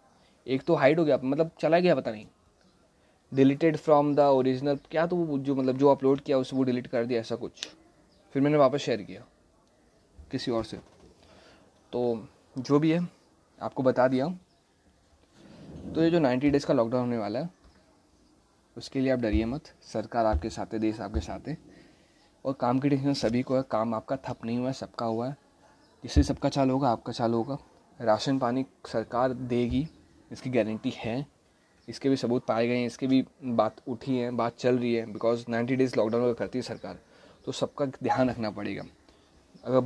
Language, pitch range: Hindi, 115-135 Hz